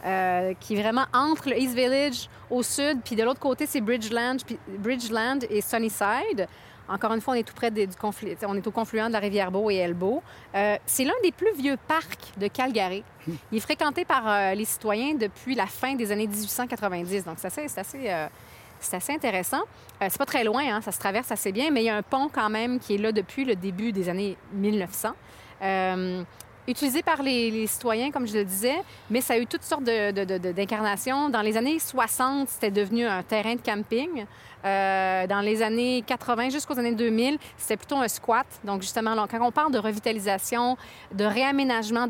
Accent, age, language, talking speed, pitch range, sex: Canadian, 30-49, French, 220 wpm, 200-250 Hz, female